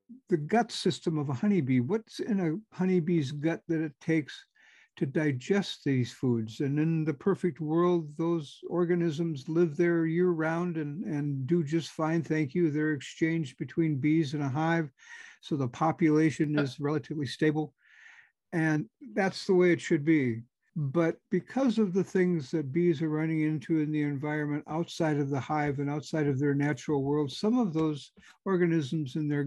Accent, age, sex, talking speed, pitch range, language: American, 60-79, male, 175 wpm, 145-180 Hz, English